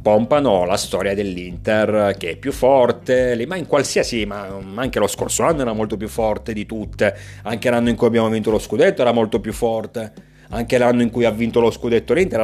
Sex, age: male, 30-49